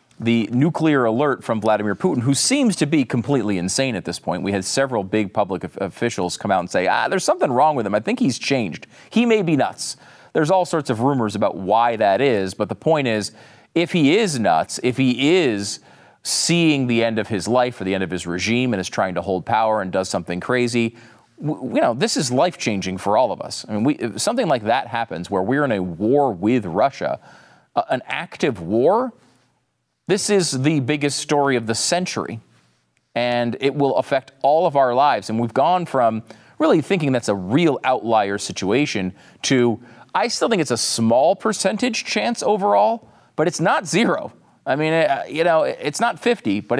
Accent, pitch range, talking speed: American, 110-155 Hz, 205 wpm